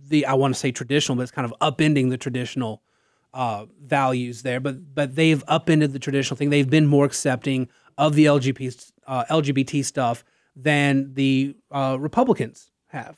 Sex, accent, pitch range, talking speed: male, American, 130-175 Hz, 175 wpm